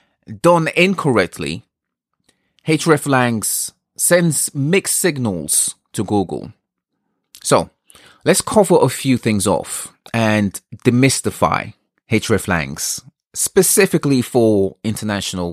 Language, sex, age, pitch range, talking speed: English, male, 30-49, 105-150 Hz, 80 wpm